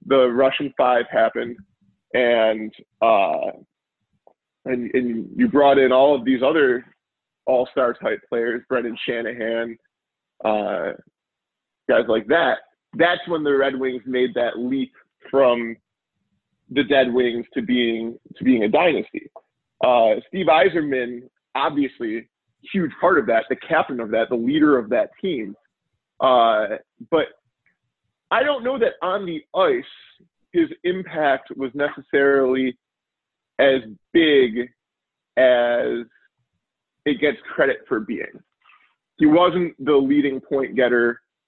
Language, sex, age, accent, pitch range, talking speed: English, male, 20-39, American, 120-145 Hz, 125 wpm